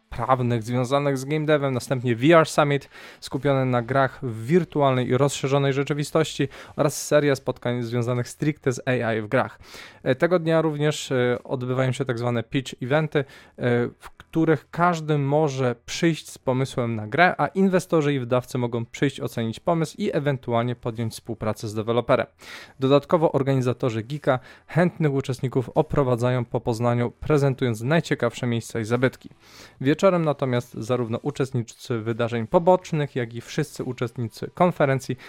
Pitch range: 120-150 Hz